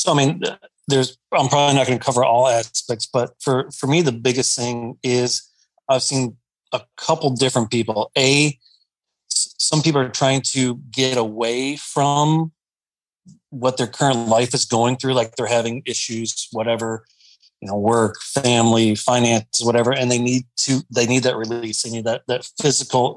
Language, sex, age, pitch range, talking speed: English, male, 30-49, 120-140 Hz, 170 wpm